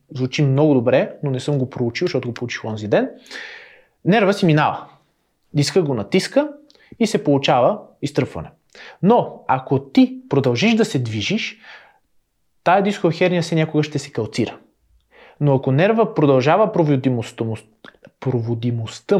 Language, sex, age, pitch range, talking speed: Bulgarian, male, 30-49, 125-170 Hz, 130 wpm